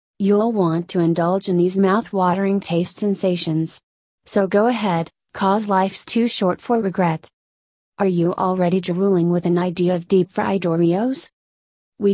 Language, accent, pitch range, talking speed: English, American, 175-200 Hz, 145 wpm